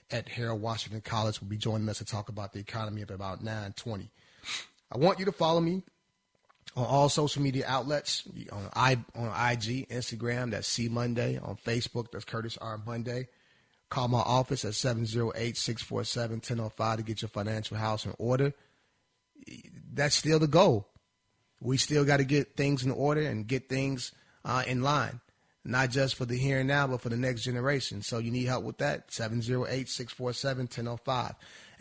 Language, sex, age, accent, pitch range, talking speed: English, male, 30-49, American, 115-135 Hz, 175 wpm